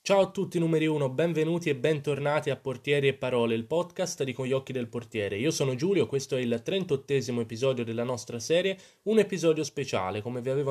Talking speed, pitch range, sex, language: 200 wpm, 115-150 Hz, male, Italian